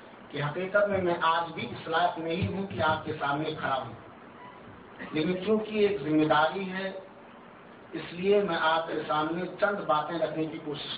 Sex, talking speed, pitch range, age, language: male, 175 wpm, 155-195 Hz, 50-69, Urdu